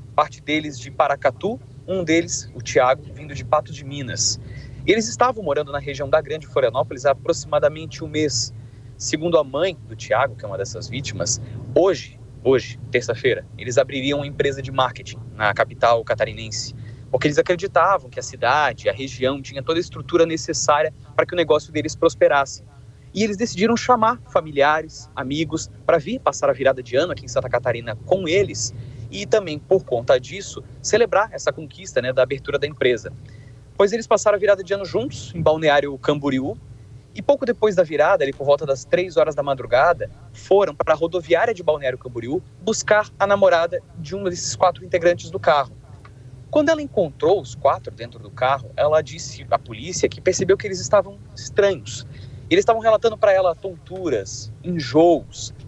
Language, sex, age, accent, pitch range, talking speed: Portuguese, male, 30-49, Brazilian, 120-170 Hz, 175 wpm